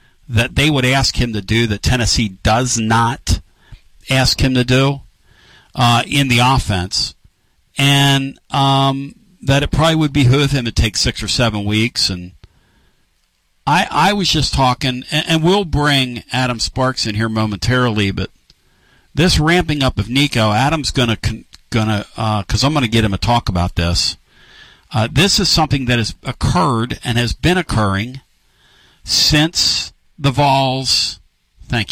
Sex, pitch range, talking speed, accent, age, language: male, 100-135 Hz, 160 wpm, American, 50-69, English